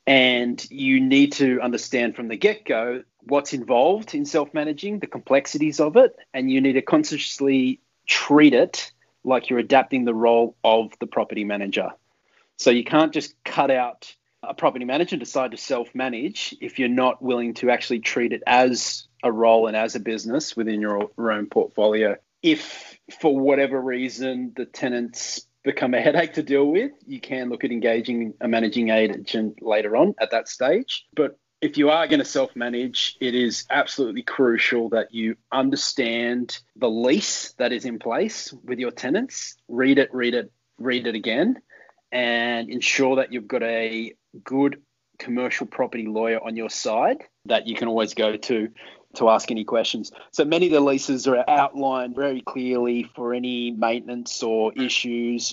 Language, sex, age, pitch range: English, male, 30-49, 115-135 Hz